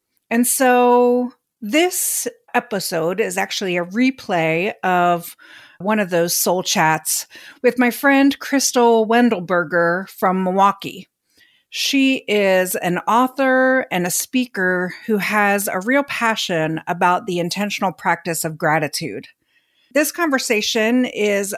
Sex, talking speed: female, 115 wpm